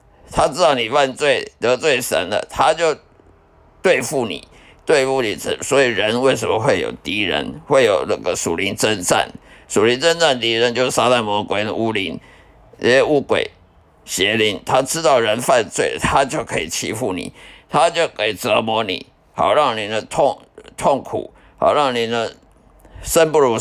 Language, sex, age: Chinese, male, 50-69